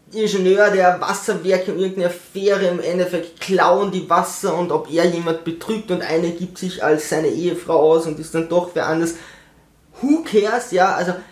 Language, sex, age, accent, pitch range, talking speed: German, male, 20-39, German, 165-205 Hz, 180 wpm